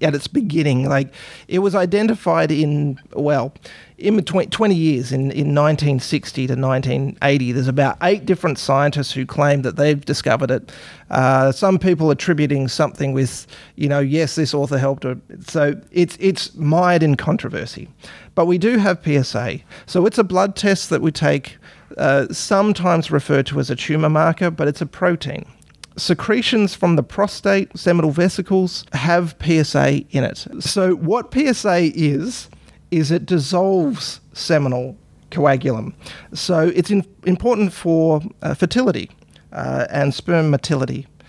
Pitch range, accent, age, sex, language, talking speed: 140-185 Hz, Australian, 30-49, male, English, 145 wpm